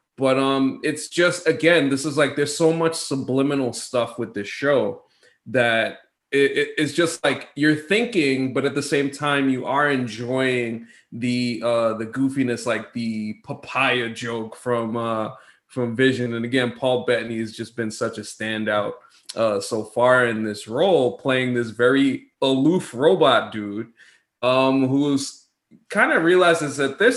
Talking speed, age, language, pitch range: 160 wpm, 20-39, English, 120-145 Hz